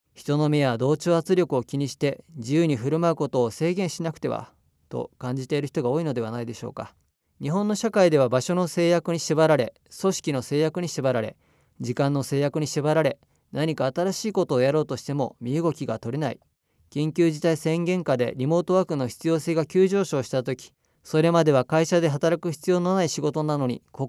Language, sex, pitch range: Japanese, male, 130-165 Hz